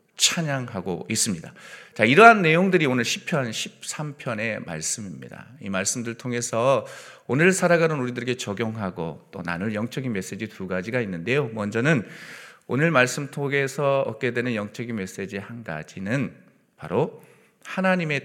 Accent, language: native, Korean